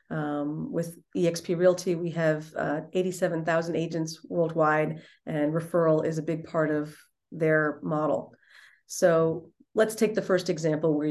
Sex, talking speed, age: female, 140 wpm, 40-59